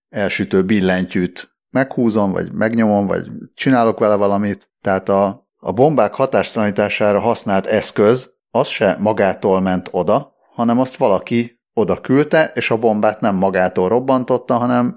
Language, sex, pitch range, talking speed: Hungarian, male, 100-125 Hz, 130 wpm